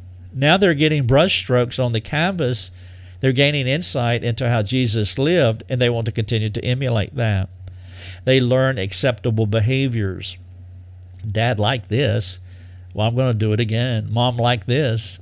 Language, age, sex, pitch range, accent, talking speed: English, 50-69, male, 100-130 Hz, American, 160 wpm